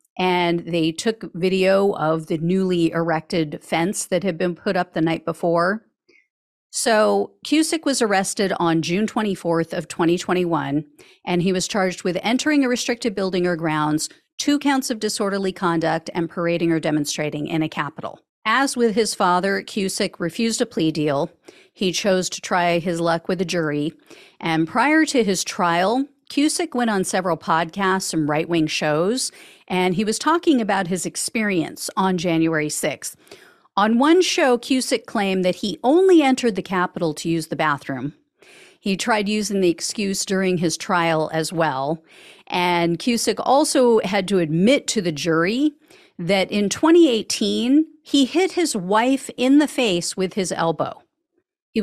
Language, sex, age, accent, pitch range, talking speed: English, female, 50-69, American, 170-240 Hz, 160 wpm